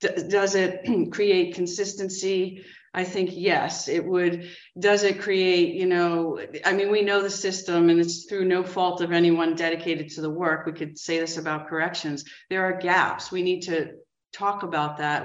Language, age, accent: English, 40-59, American